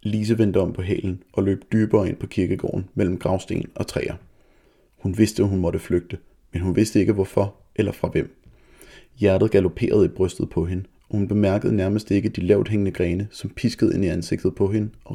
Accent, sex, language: native, male, Danish